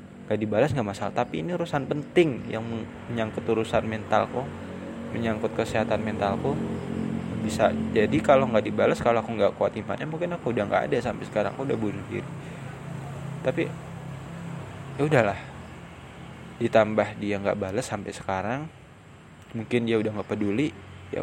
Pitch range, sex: 105-135 Hz, male